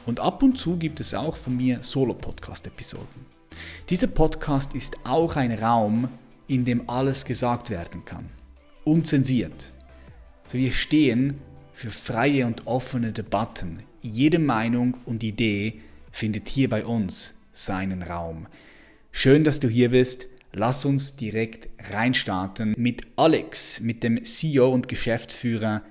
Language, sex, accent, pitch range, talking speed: German, male, German, 105-135 Hz, 130 wpm